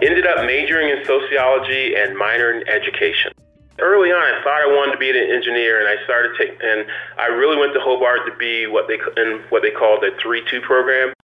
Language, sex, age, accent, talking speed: English, male, 30-49, American, 210 wpm